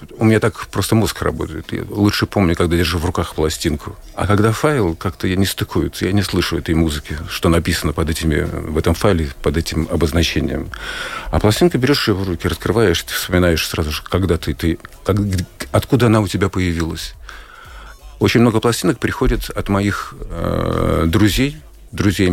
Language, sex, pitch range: Russian, male, 85-105 Hz